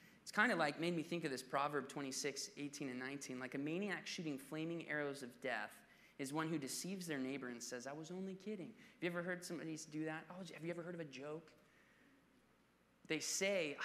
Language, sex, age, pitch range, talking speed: English, male, 20-39, 125-160 Hz, 220 wpm